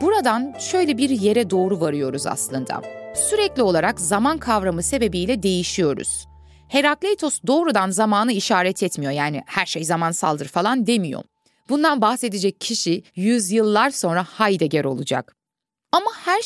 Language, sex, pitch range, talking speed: Turkish, female, 175-260 Hz, 130 wpm